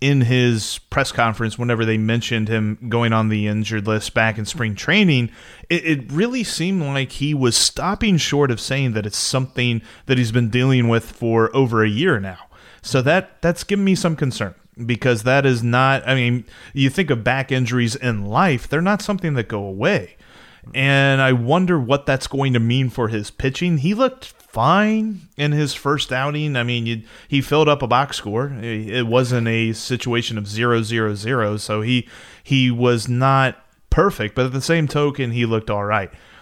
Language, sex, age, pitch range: English, male, 30-49, 115-140 Hz